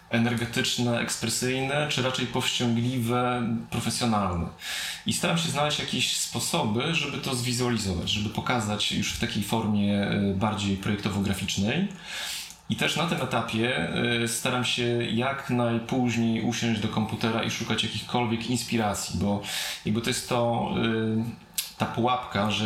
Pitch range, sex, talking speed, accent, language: 105-120 Hz, male, 120 wpm, native, Polish